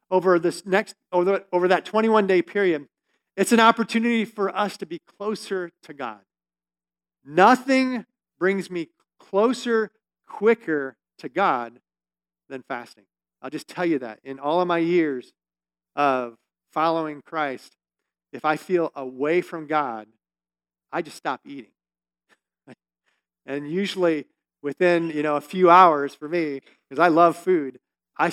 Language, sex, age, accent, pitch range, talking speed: English, male, 50-69, American, 135-195 Hz, 140 wpm